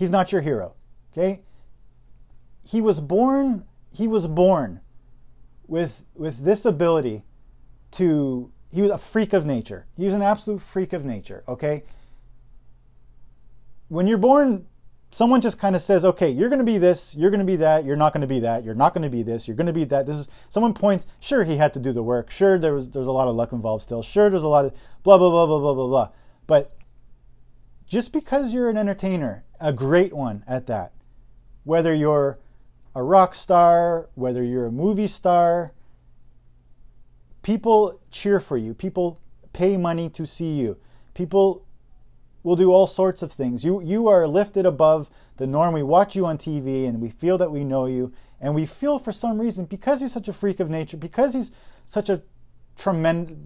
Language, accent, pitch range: English, American, 125-195 Hz